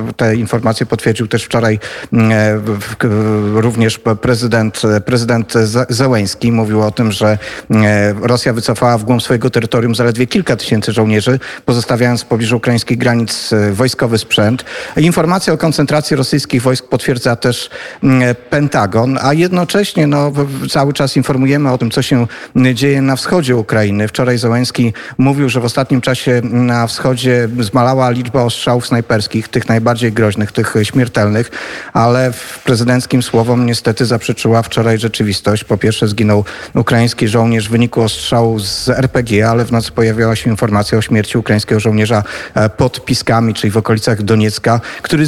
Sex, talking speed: male, 140 wpm